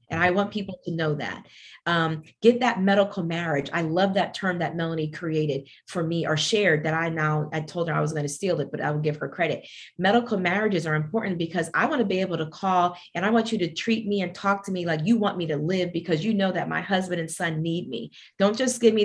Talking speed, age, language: 265 wpm, 30-49, English